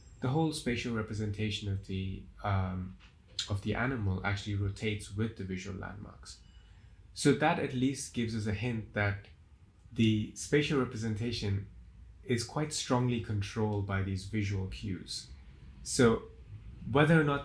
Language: English